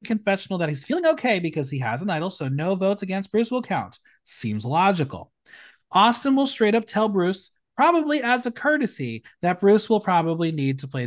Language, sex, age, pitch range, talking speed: English, male, 30-49, 130-210 Hz, 195 wpm